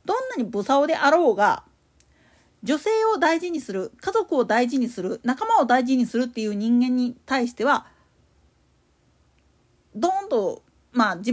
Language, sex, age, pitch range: Japanese, female, 40-59, 240-345 Hz